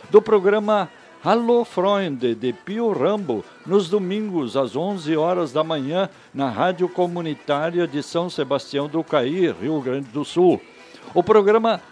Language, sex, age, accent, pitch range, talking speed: Portuguese, male, 60-79, Brazilian, 150-190 Hz, 140 wpm